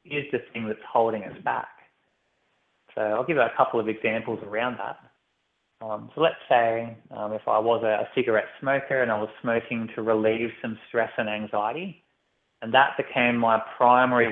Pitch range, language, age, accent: 110-115 Hz, English, 20-39, Australian